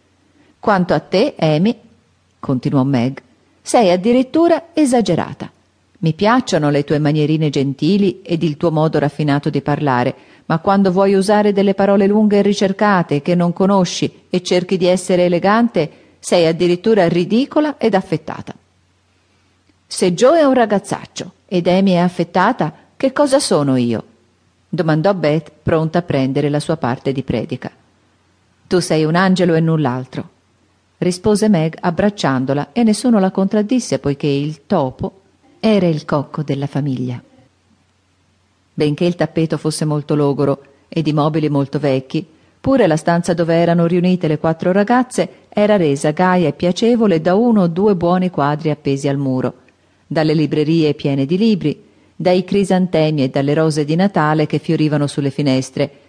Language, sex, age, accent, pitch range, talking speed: Italian, female, 40-59, native, 140-195 Hz, 150 wpm